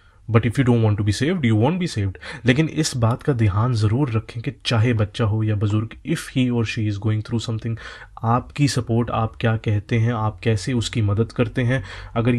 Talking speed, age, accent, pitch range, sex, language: 230 wpm, 30-49, Indian, 105-125 Hz, male, English